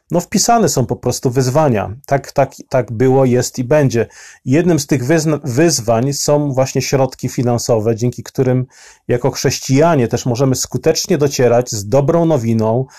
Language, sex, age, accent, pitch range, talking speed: Polish, male, 40-59, native, 120-145 Hz, 150 wpm